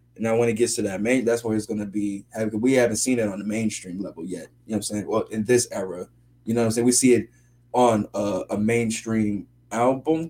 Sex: male